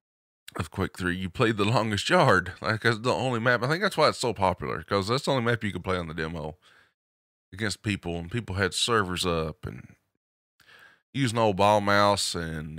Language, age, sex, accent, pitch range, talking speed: English, 20-39, male, American, 85-110 Hz, 210 wpm